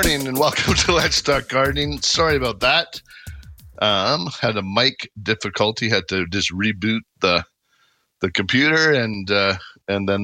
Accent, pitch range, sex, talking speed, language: American, 90-120 Hz, male, 160 wpm, English